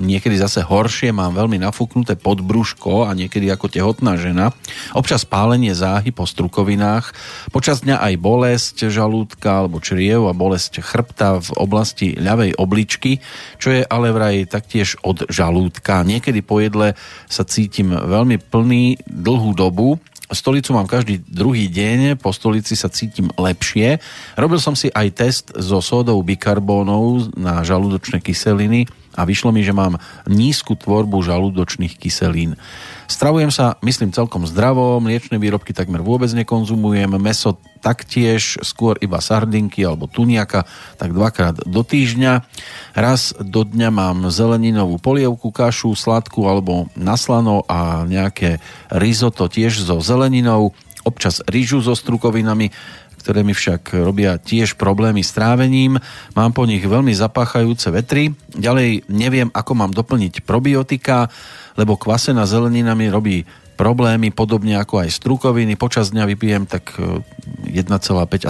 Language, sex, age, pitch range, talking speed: Slovak, male, 40-59, 95-120 Hz, 135 wpm